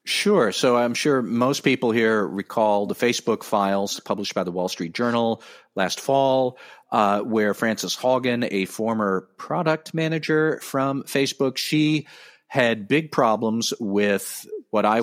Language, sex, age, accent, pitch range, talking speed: English, male, 40-59, American, 110-140 Hz, 145 wpm